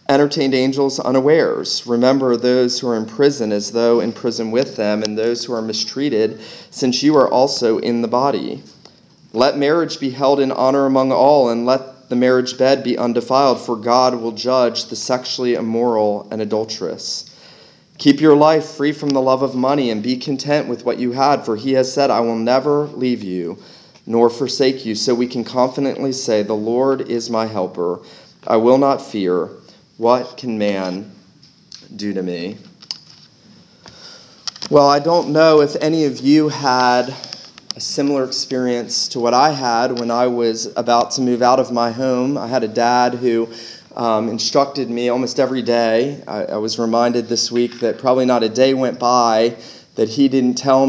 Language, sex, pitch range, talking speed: English, male, 115-135 Hz, 180 wpm